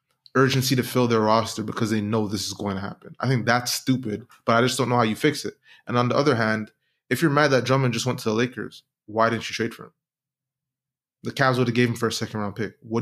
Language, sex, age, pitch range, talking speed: English, male, 20-39, 115-135 Hz, 265 wpm